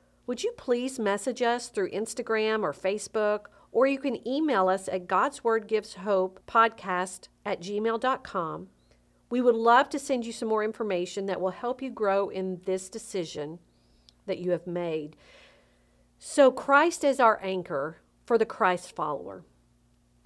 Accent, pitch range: American, 185-250 Hz